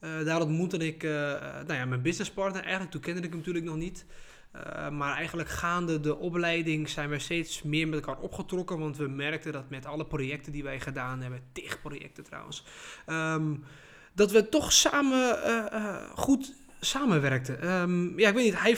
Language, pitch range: Dutch, 140-185 Hz